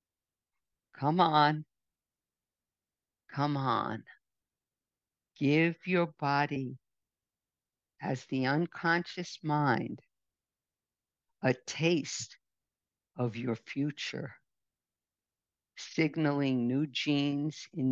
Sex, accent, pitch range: female, American, 130-160 Hz